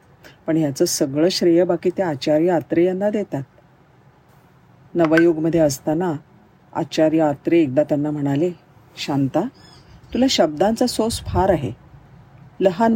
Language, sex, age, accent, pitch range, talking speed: Marathi, female, 40-59, native, 140-195 Hz, 115 wpm